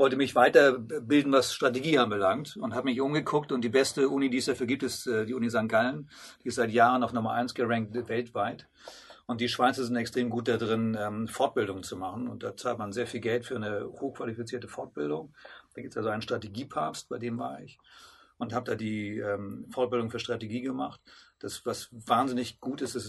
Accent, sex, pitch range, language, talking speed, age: German, male, 115-135 Hz, German, 205 wpm, 40-59